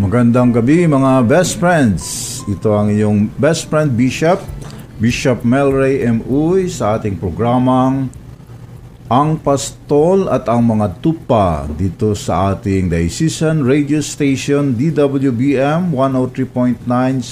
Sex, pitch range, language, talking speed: male, 100-135 Hz, Filipino, 105 wpm